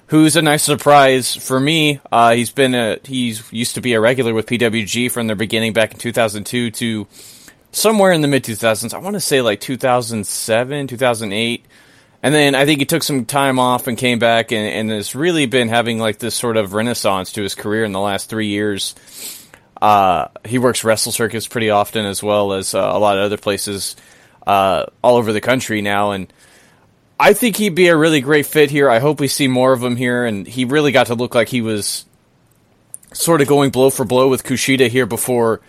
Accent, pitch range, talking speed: American, 110-135 Hz, 215 wpm